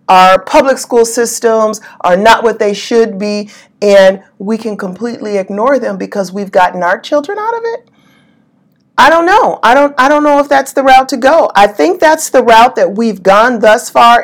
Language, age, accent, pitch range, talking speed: English, 40-59, American, 195-255 Hz, 200 wpm